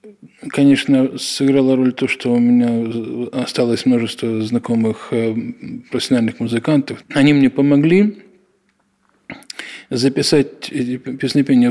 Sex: male